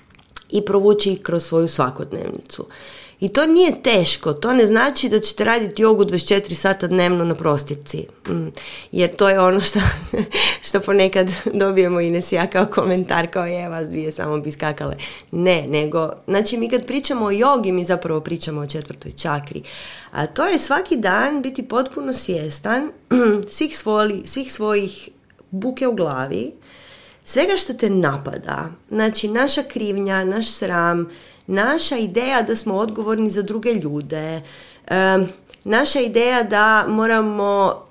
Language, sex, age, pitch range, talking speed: Croatian, female, 30-49, 170-230 Hz, 145 wpm